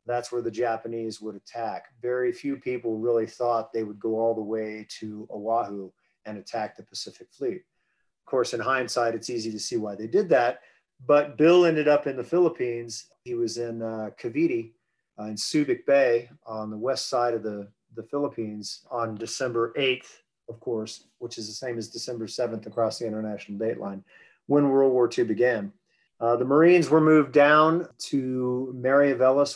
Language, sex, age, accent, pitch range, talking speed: English, male, 40-59, American, 115-140 Hz, 180 wpm